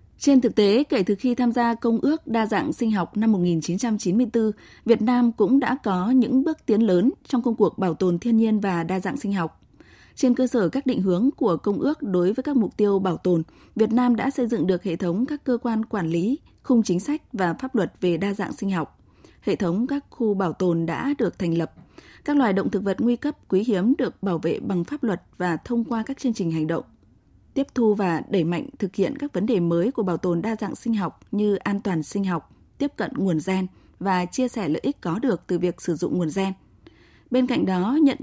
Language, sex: Vietnamese, female